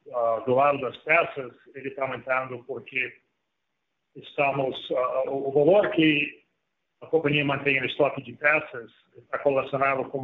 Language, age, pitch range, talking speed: Portuguese, 40-59, 130-145 Hz, 140 wpm